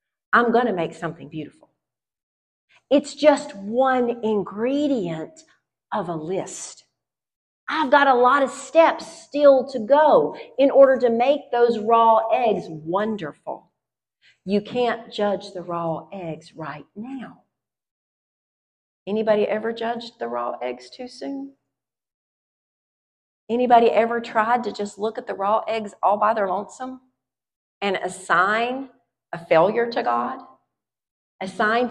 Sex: female